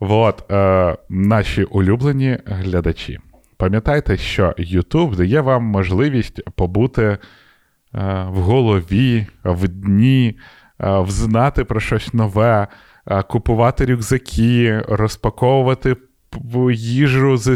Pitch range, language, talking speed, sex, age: 95-125 Hz, Ukrainian, 80 wpm, male, 20-39